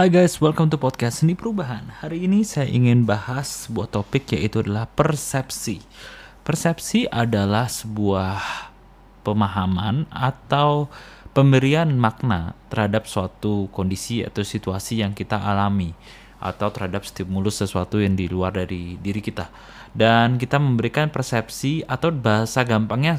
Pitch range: 105-130 Hz